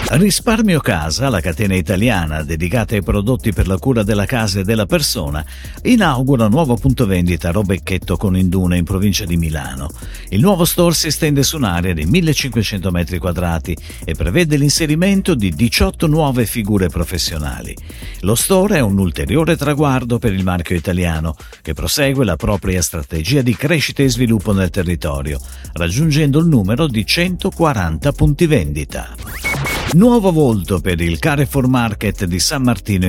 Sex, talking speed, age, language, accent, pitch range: male, 155 wpm, 50-69, Italian, native, 90-145 Hz